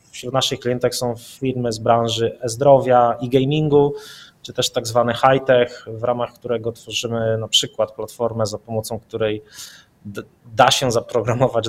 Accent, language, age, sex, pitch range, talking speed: native, Polish, 20-39, male, 110-130 Hz, 150 wpm